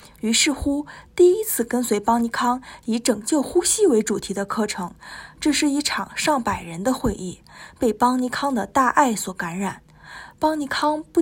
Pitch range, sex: 200-270 Hz, female